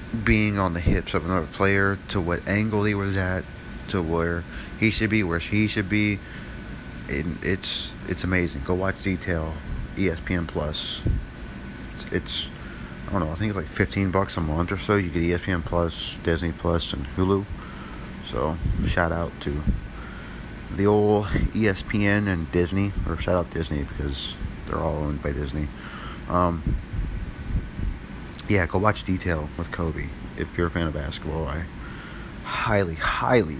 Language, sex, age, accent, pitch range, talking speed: English, male, 30-49, American, 75-100 Hz, 160 wpm